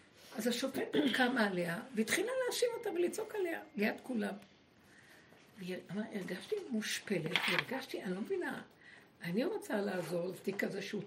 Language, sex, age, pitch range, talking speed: Hebrew, female, 60-79, 190-240 Hz, 135 wpm